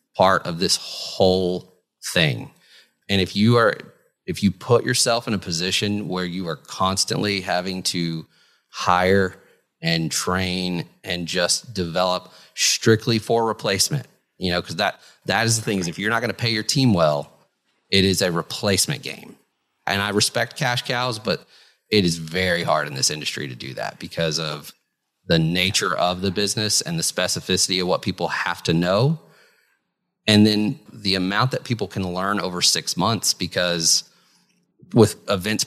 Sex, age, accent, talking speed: male, 30-49, American, 170 wpm